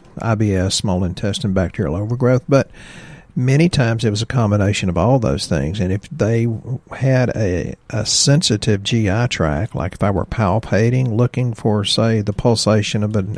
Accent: American